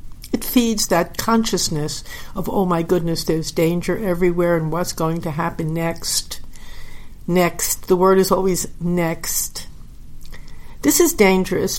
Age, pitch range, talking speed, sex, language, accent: 60-79, 175-220 Hz, 130 wpm, female, English, American